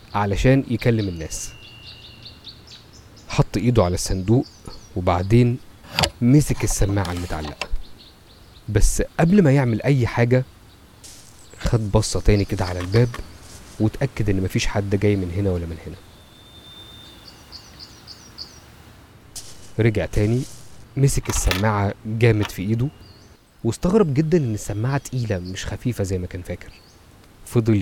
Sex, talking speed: male, 110 wpm